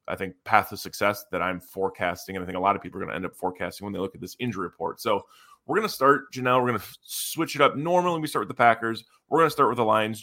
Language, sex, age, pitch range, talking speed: English, male, 20-39, 100-120 Hz, 310 wpm